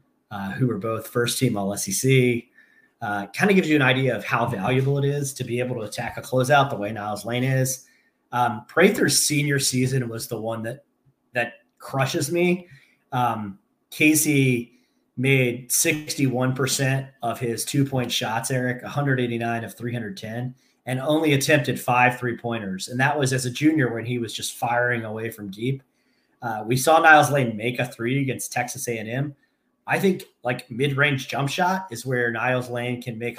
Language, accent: English, American